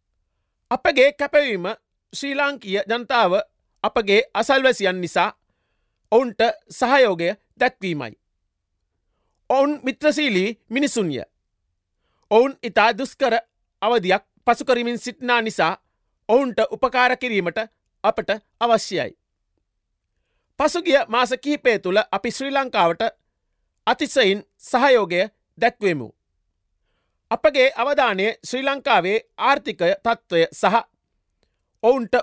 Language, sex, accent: Japanese, male, Indian